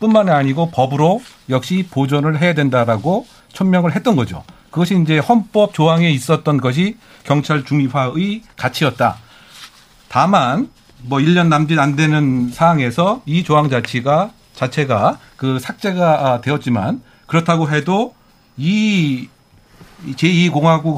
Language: Korean